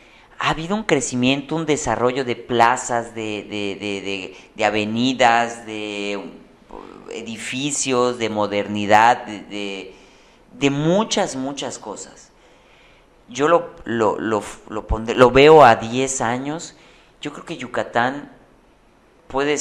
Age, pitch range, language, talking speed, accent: 40-59, 105-135 Hz, Spanish, 100 wpm, Mexican